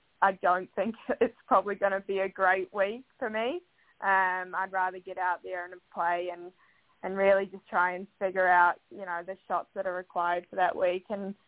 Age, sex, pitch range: 10-29, female, 190-220 Hz